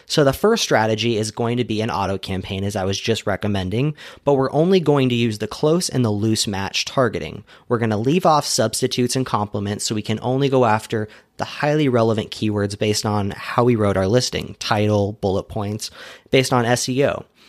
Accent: American